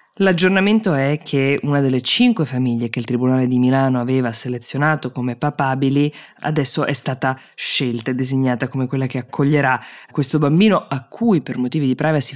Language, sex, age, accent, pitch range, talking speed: Italian, female, 20-39, native, 125-150 Hz, 165 wpm